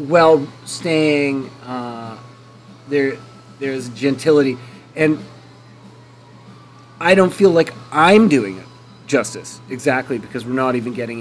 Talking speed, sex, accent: 110 wpm, male, American